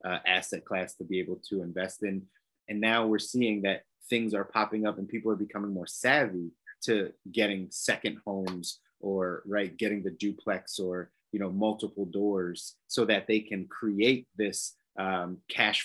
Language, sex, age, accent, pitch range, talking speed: English, male, 30-49, American, 95-110 Hz, 175 wpm